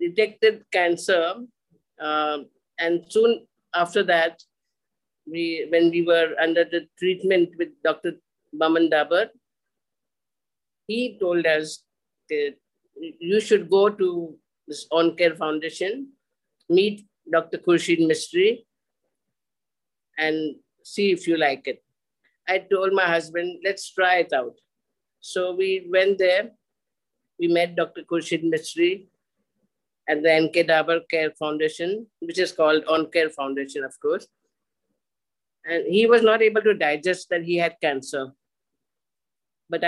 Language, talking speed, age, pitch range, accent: English, 120 wpm, 50-69, 160-195 Hz, Indian